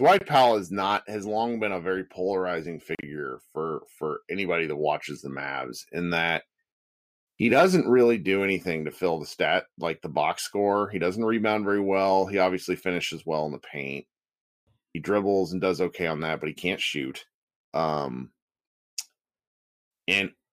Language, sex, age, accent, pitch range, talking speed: English, male, 30-49, American, 90-120 Hz, 165 wpm